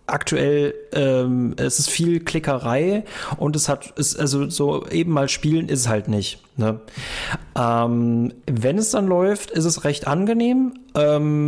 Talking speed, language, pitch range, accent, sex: 160 wpm, German, 125-160 Hz, German, male